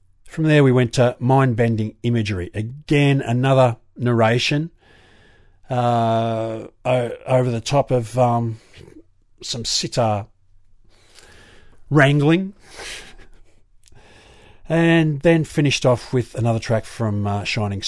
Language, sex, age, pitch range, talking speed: English, male, 50-69, 100-135 Hz, 100 wpm